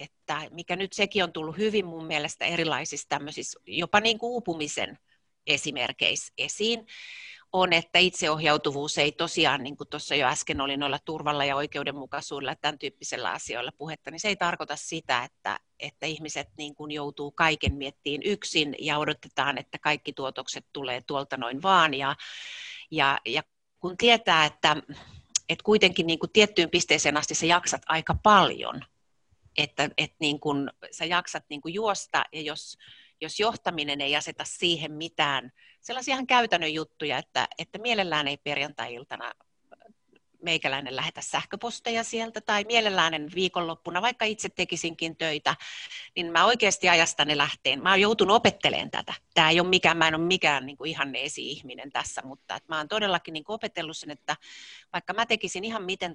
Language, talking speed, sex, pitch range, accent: Finnish, 160 wpm, female, 145-180 Hz, native